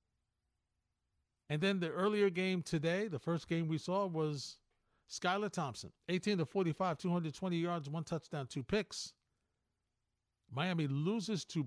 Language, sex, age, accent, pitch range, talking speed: English, male, 50-69, American, 110-165 Hz, 135 wpm